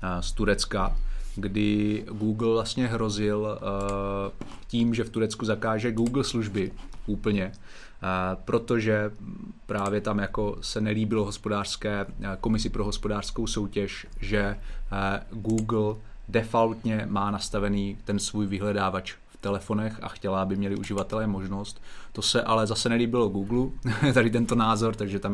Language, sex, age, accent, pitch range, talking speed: Czech, male, 30-49, native, 100-115 Hz, 120 wpm